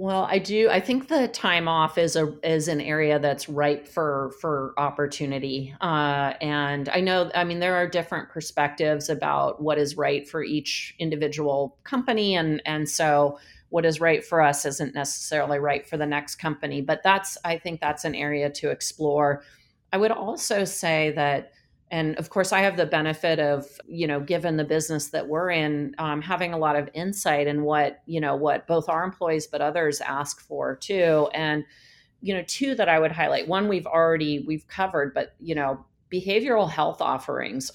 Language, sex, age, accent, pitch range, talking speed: English, female, 30-49, American, 145-170 Hz, 190 wpm